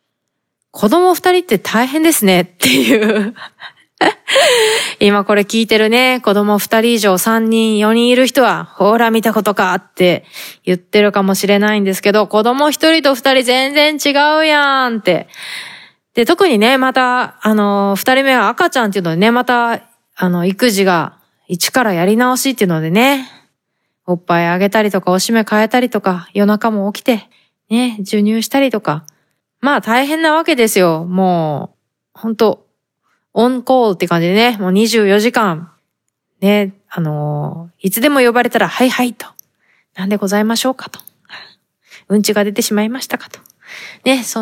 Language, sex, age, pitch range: Japanese, female, 20-39, 195-255 Hz